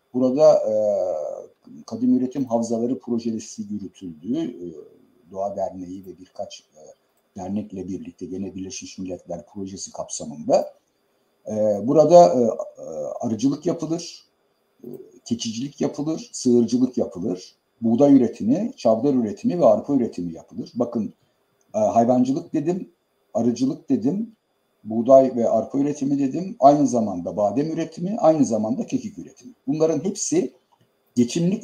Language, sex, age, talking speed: Turkish, male, 60-79, 100 wpm